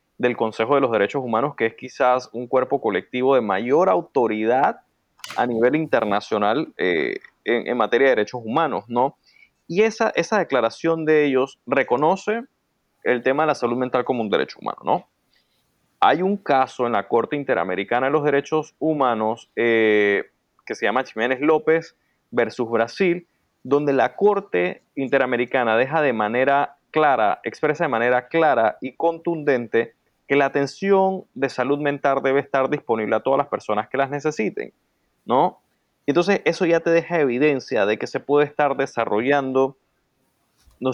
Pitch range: 120-155 Hz